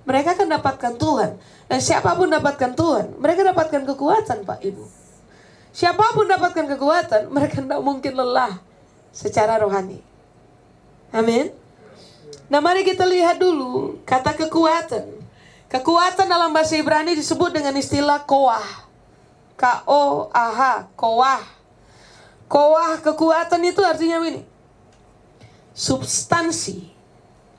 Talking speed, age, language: 100 wpm, 20-39, Indonesian